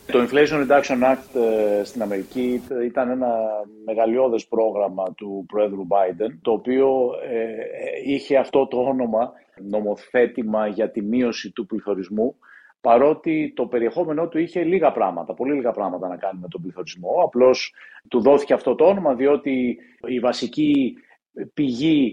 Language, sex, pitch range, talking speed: Greek, male, 110-145 Hz, 135 wpm